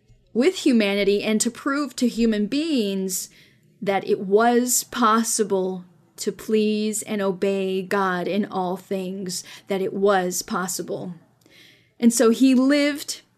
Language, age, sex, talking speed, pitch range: English, 10-29, female, 125 wpm, 195-240 Hz